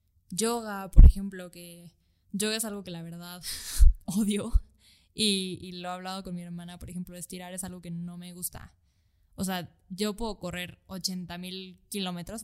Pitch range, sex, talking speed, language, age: 165-190 Hz, female, 175 wpm, Spanish, 10-29